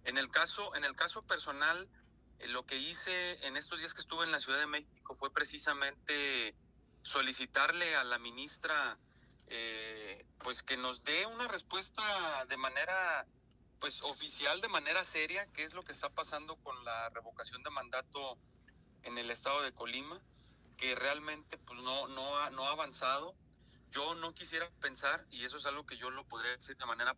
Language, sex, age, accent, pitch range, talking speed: Spanish, male, 30-49, Mexican, 125-160 Hz, 180 wpm